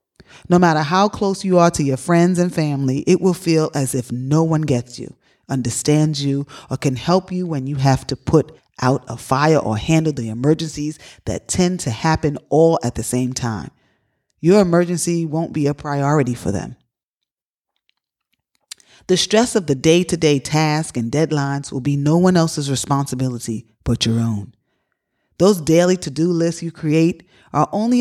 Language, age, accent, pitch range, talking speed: English, 30-49, American, 130-170 Hz, 170 wpm